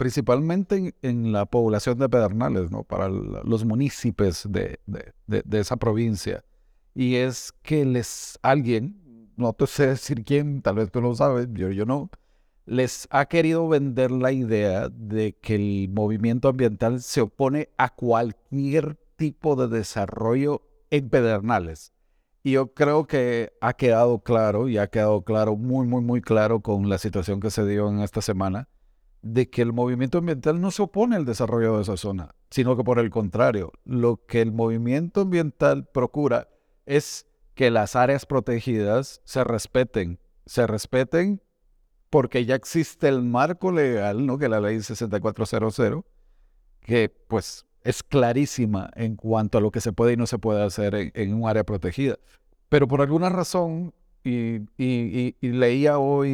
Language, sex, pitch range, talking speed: Spanish, male, 110-140 Hz, 165 wpm